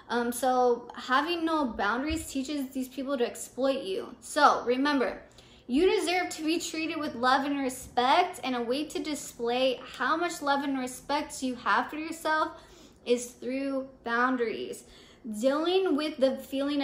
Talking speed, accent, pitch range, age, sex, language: 155 wpm, American, 245-290 Hz, 20-39, female, English